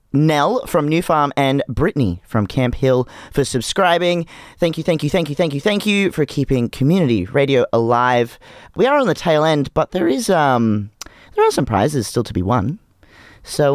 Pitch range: 120-165 Hz